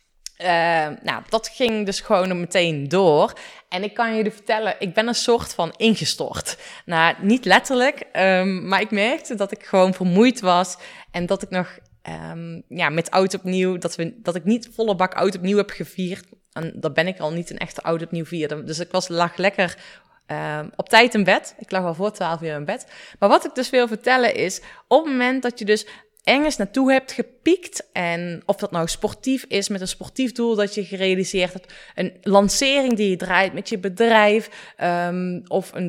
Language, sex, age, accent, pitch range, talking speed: Dutch, female, 20-39, Dutch, 180-225 Hz, 195 wpm